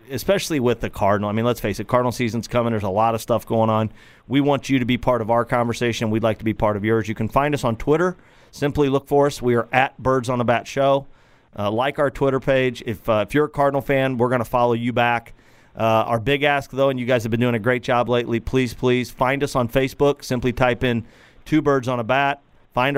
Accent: American